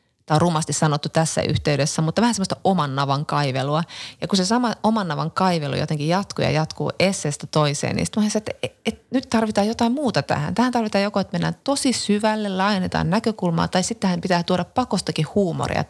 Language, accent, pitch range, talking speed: Finnish, native, 145-195 Hz, 190 wpm